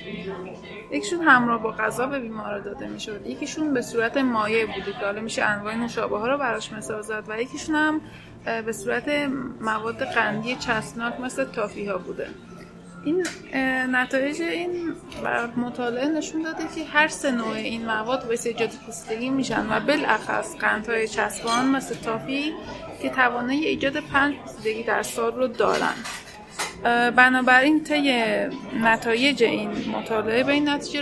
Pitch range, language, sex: 220-280 Hz, Persian, female